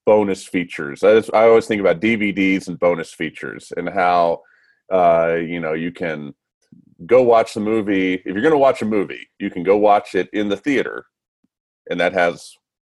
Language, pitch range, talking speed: English, 90-115 Hz, 185 wpm